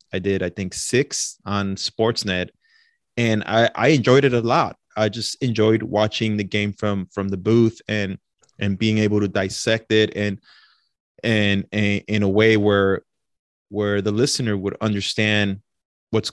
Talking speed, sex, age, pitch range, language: 160 wpm, male, 20-39, 100-110 Hz, English